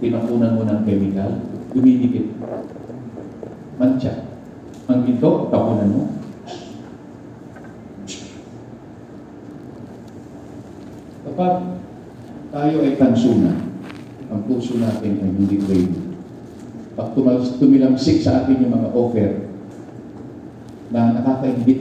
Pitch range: 100-135 Hz